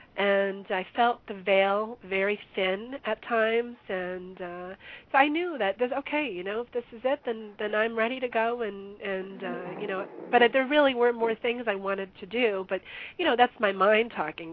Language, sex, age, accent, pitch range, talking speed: English, female, 40-59, American, 185-225 Hz, 220 wpm